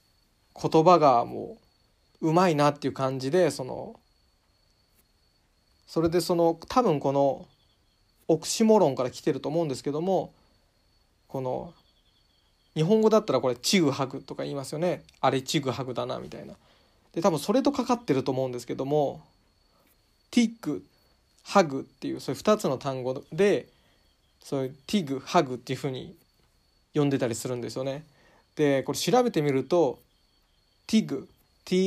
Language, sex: Japanese, male